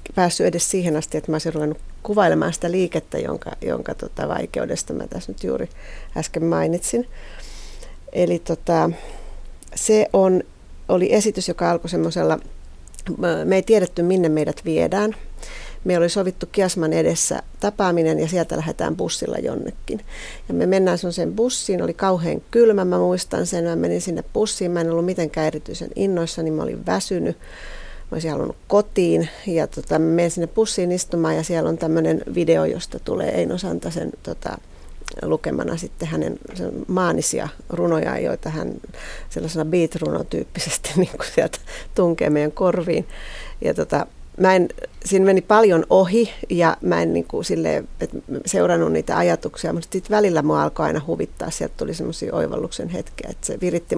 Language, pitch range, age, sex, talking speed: Finnish, 155-190 Hz, 40-59, female, 155 wpm